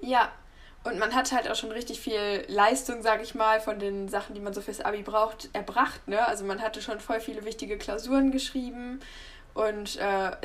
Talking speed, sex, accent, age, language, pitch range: 200 wpm, female, German, 10-29, German, 205-240 Hz